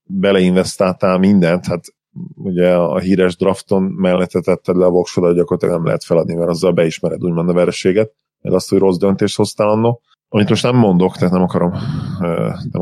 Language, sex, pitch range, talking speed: Hungarian, male, 90-115 Hz, 170 wpm